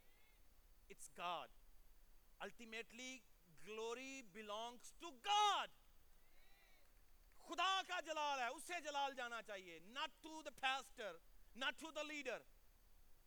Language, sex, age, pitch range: Urdu, male, 40-59, 230-320 Hz